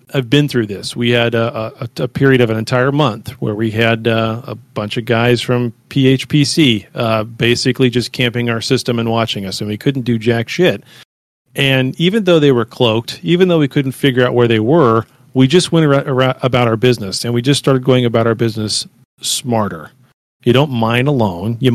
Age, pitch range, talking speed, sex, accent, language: 40-59, 115-140 Hz, 210 wpm, male, American, English